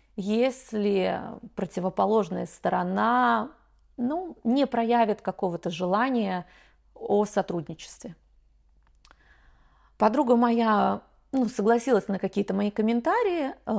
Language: Russian